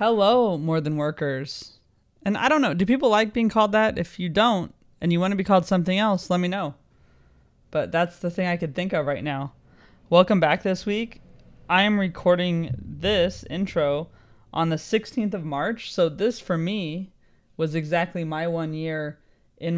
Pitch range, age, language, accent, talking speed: 135-175 Hz, 20-39, English, American, 190 wpm